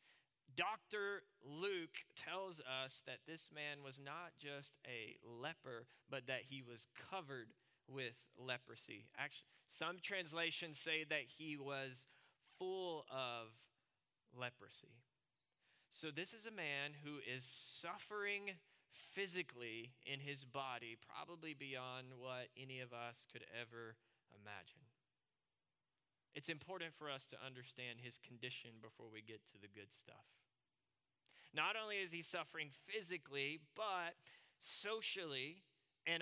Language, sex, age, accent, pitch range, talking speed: English, male, 20-39, American, 130-170 Hz, 125 wpm